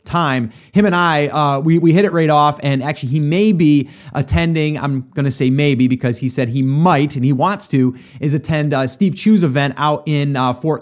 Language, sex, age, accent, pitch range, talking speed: English, male, 30-49, American, 140-195 Hz, 225 wpm